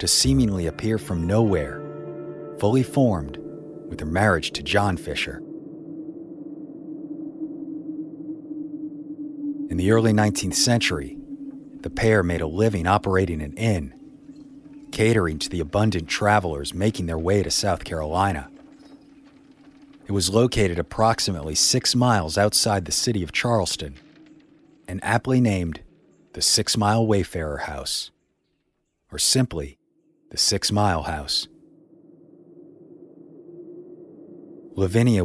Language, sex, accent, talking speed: English, male, American, 105 wpm